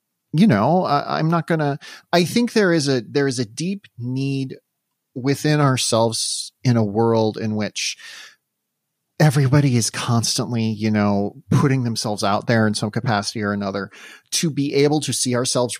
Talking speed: 165 wpm